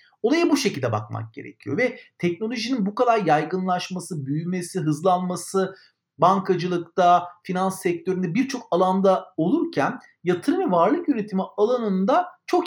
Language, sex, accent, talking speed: Turkish, male, native, 115 wpm